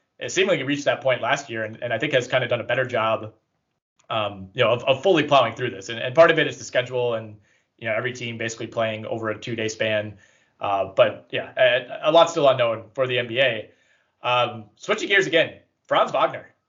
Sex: male